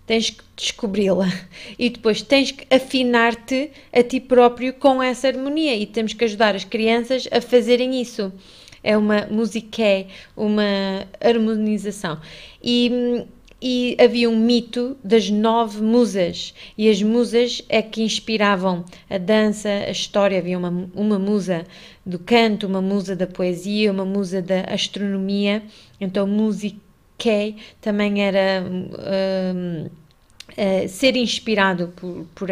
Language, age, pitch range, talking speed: Portuguese, 20-39, 195-235 Hz, 125 wpm